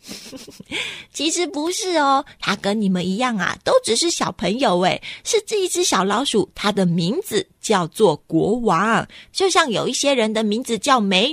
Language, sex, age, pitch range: Chinese, female, 30-49, 190-280 Hz